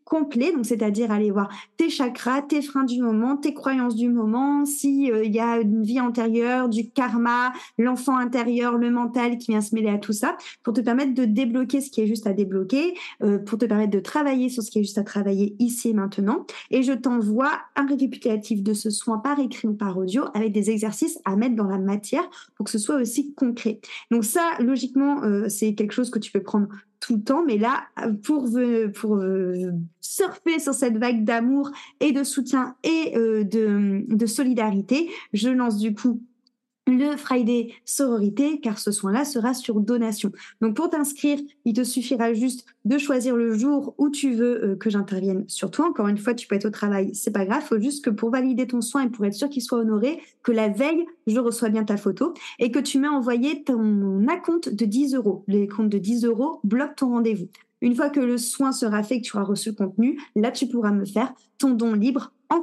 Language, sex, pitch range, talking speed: French, female, 215-270 Hz, 215 wpm